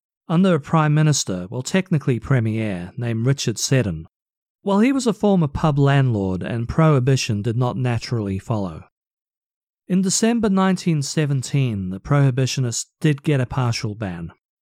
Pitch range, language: 115-160 Hz, English